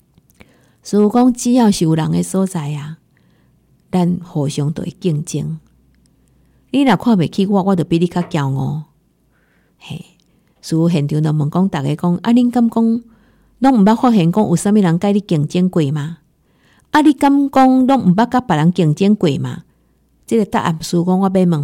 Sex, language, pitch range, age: female, Chinese, 160-205 Hz, 50-69